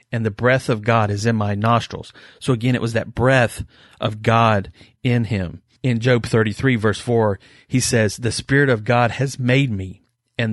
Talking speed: 195 wpm